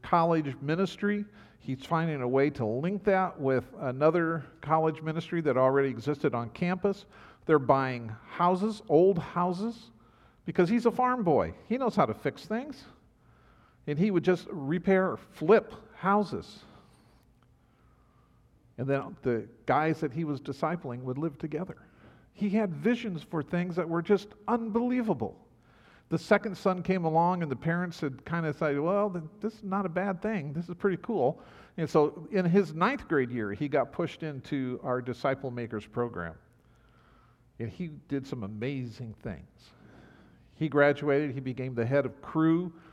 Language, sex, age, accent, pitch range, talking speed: English, male, 50-69, American, 130-180 Hz, 160 wpm